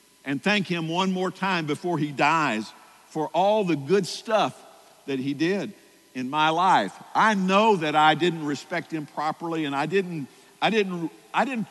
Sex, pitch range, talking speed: male, 135-180 Hz, 180 wpm